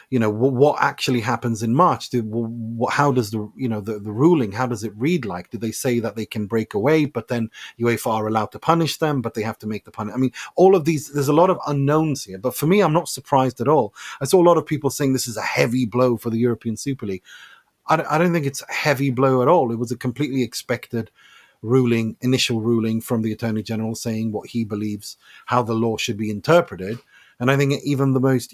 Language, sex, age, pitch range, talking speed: English, male, 30-49, 115-140 Hz, 250 wpm